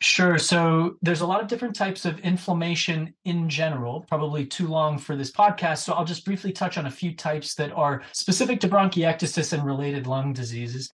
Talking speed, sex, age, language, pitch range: 195 wpm, male, 30-49, English, 140-175 Hz